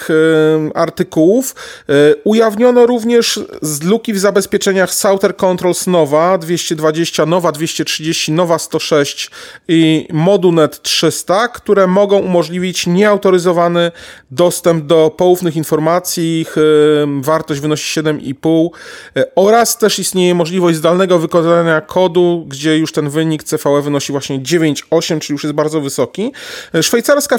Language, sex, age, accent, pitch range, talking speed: Polish, male, 40-59, native, 160-190 Hz, 110 wpm